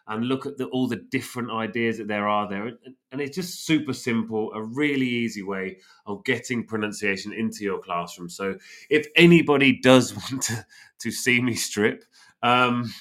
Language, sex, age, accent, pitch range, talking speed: English, male, 30-49, British, 95-120 Hz, 180 wpm